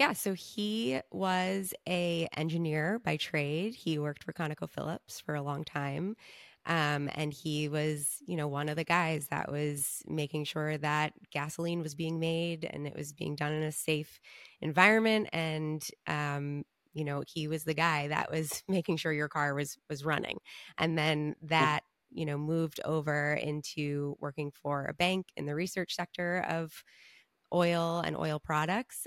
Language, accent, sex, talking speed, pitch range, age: English, American, female, 170 wpm, 145-170 Hz, 20-39